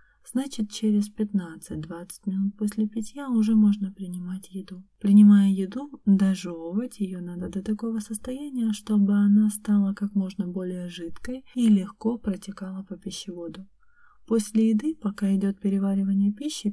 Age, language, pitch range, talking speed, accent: 30-49, Russian, 195-220 Hz, 130 wpm, native